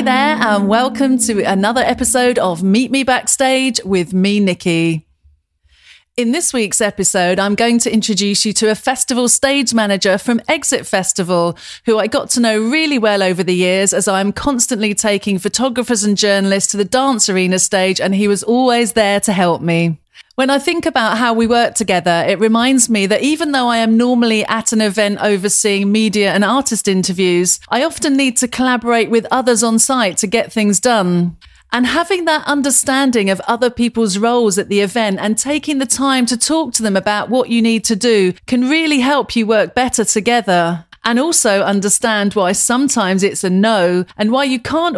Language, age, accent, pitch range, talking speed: English, 30-49, British, 200-250 Hz, 190 wpm